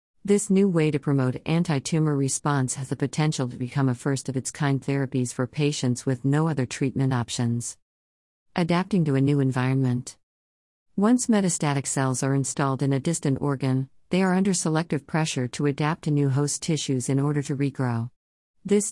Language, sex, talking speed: English, female, 165 wpm